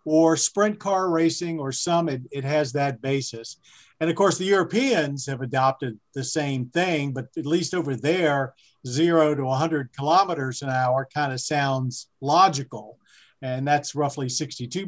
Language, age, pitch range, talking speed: English, 50-69, 135-165 Hz, 165 wpm